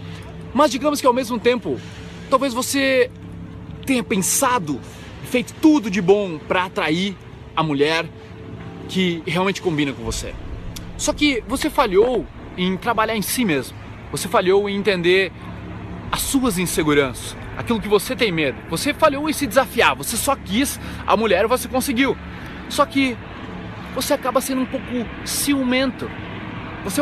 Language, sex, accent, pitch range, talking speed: Portuguese, male, Brazilian, 150-255 Hz, 145 wpm